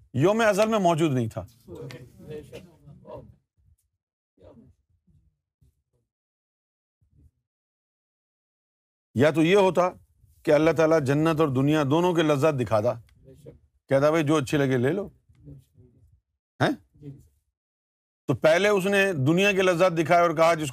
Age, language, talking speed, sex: 50-69, Urdu, 115 wpm, male